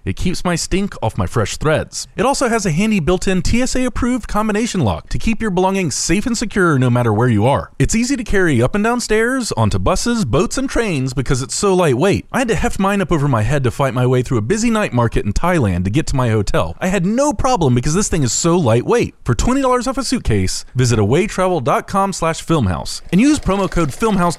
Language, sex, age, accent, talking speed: English, male, 30-49, American, 230 wpm